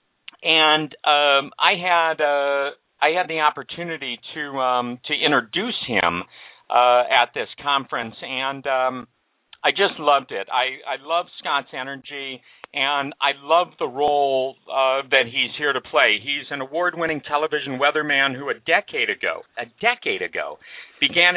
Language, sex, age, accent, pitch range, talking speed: English, male, 50-69, American, 140-170 Hz, 150 wpm